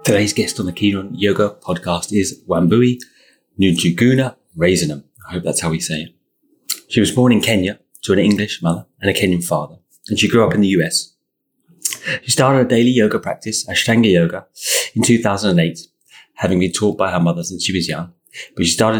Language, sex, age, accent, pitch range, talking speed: English, male, 30-49, British, 90-125 Hz, 195 wpm